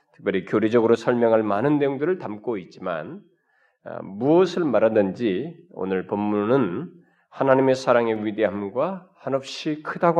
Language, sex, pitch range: Korean, male, 105-140 Hz